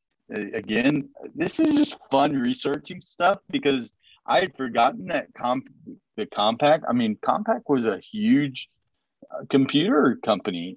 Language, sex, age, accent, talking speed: English, male, 30-49, American, 130 wpm